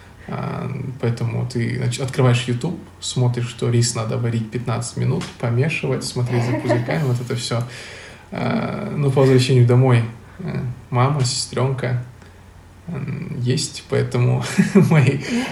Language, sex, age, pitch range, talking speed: Russian, male, 20-39, 115-130 Hz, 110 wpm